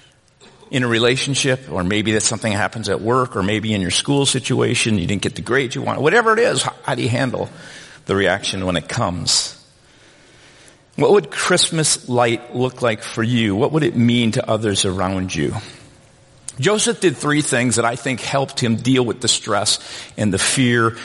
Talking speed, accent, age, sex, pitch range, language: 190 wpm, American, 50-69, male, 115-150 Hz, English